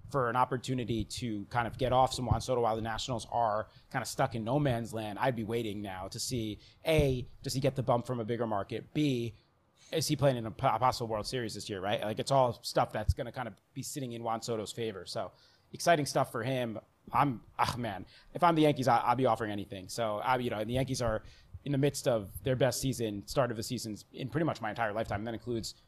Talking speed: 250 wpm